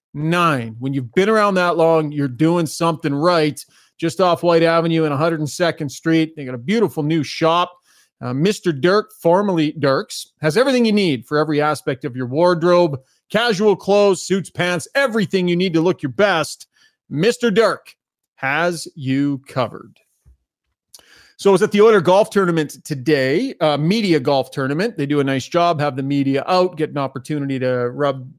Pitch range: 140-175 Hz